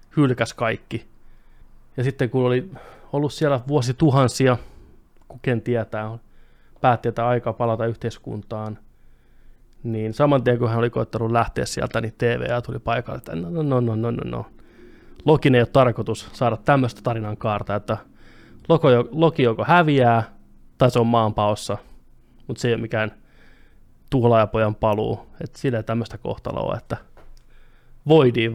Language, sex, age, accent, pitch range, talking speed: Finnish, male, 20-39, native, 115-140 Hz, 140 wpm